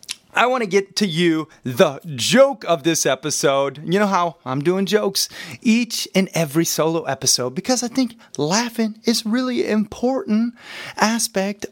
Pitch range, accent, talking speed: 140-220 Hz, American, 155 wpm